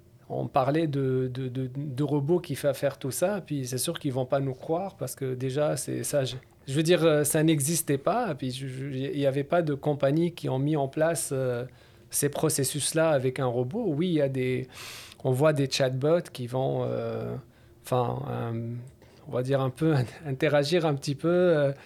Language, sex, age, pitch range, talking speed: French, male, 40-59, 125-150 Hz, 210 wpm